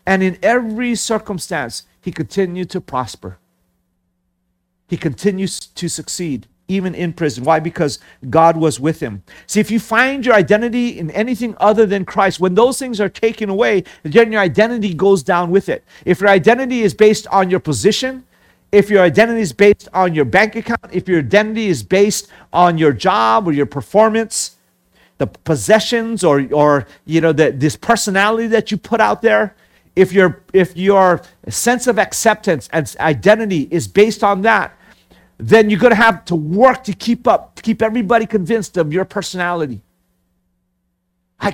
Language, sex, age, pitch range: English, male, 50-69, 155-210 Hz